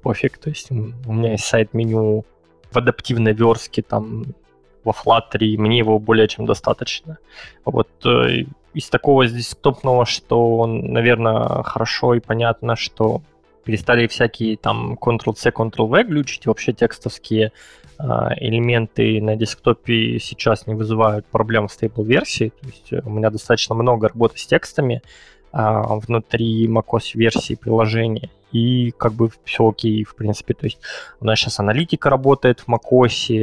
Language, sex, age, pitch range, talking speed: Russian, male, 20-39, 110-125 Hz, 140 wpm